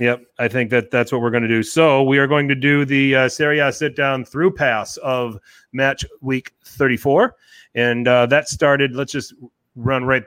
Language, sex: English, male